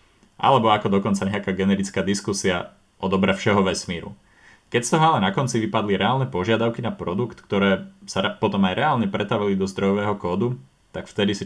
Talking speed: 175 wpm